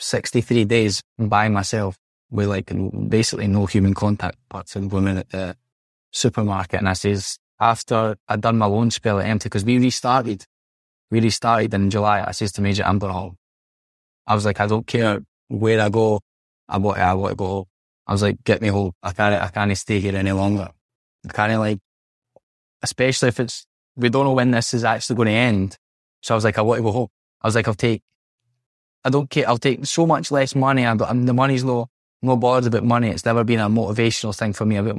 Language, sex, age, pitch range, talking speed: English, male, 10-29, 100-115 Hz, 220 wpm